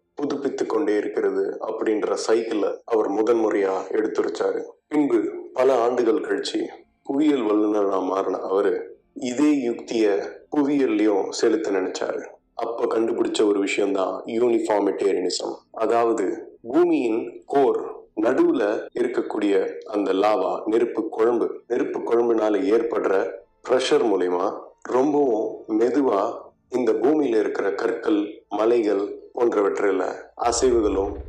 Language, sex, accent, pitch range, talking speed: Tamil, male, native, 325-435 Hz, 95 wpm